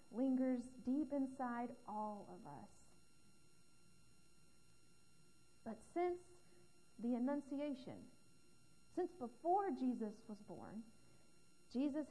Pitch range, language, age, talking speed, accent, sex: 225-275 Hz, English, 40-59, 80 wpm, American, female